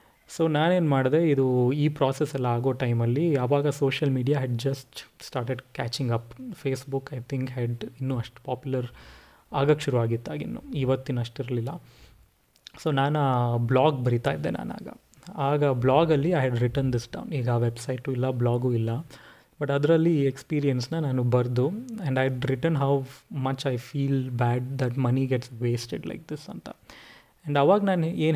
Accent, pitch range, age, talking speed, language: native, 125-155 Hz, 30-49, 150 wpm, Kannada